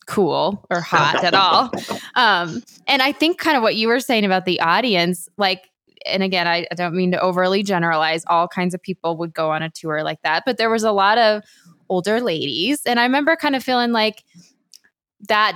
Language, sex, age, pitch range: English, female, 20-39, 185-230 Hz